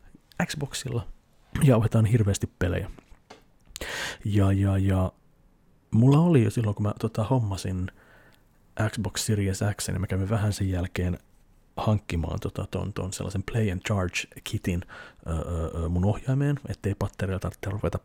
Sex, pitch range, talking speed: male, 95-115 Hz, 125 wpm